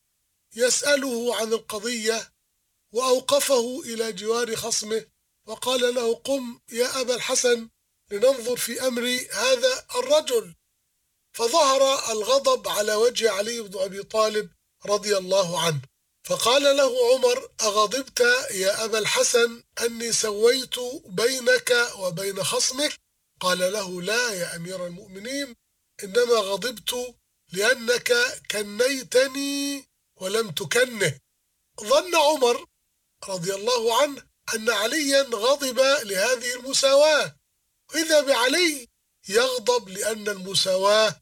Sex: male